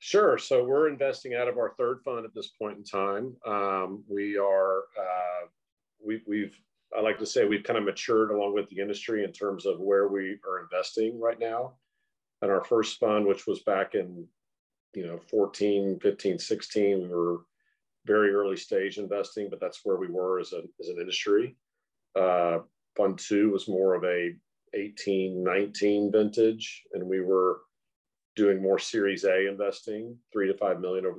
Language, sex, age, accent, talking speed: English, male, 50-69, American, 180 wpm